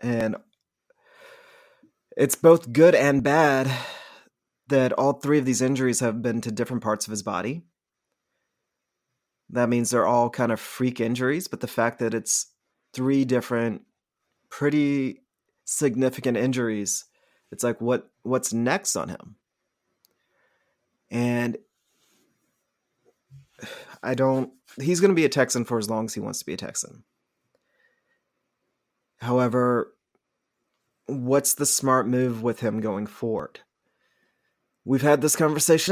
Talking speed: 130 wpm